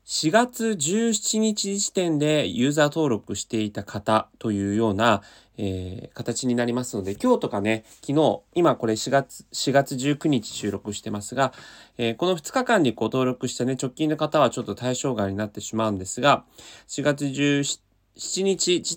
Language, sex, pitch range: Japanese, male, 105-150 Hz